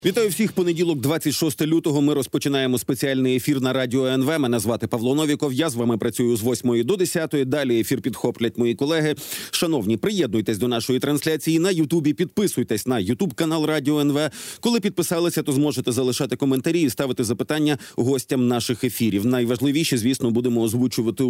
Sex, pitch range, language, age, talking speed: male, 130-170 Hz, Ukrainian, 40-59, 160 wpm